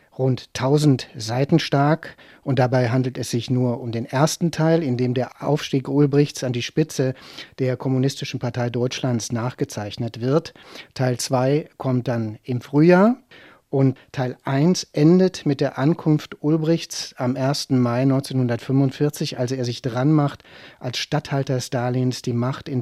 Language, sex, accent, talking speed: German, male, German, 150 wpm